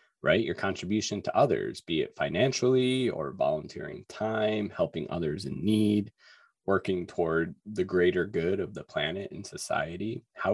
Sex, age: male, 20-39